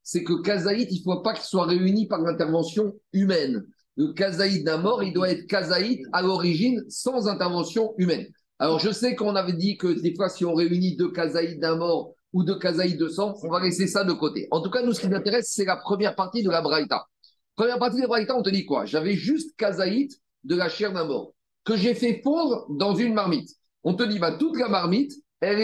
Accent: French